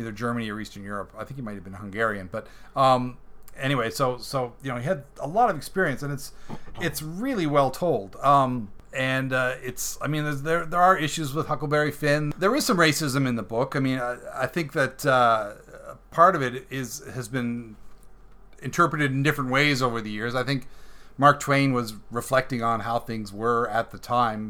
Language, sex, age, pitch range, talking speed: English, male, 40-59, 115-140 Hz, 205 wpm